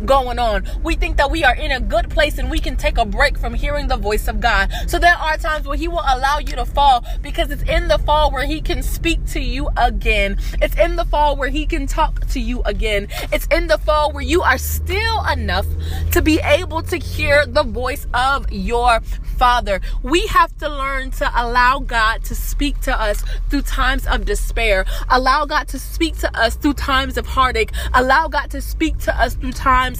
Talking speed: 220 wpm